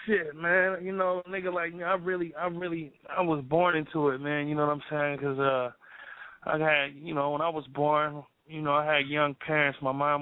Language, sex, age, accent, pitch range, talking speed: English, male, 20-39, American, 135-150 Hz, 230 wpm